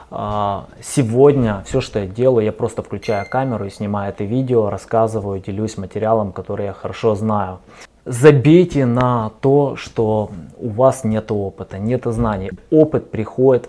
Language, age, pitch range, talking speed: Russian, 20-39, 105-125 Hz, 140 wpm